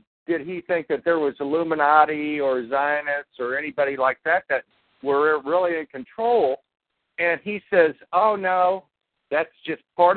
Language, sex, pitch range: English, male, 135-180 Hz